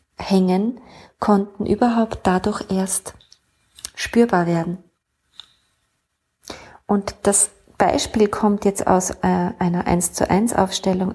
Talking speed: 100 wpm